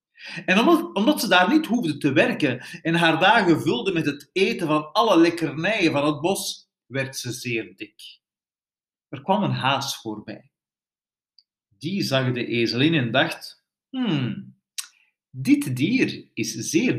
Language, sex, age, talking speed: Dutch, male, 50-69, 150 wpm